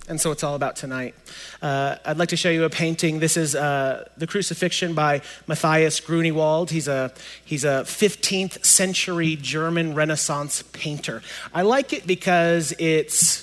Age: 30-49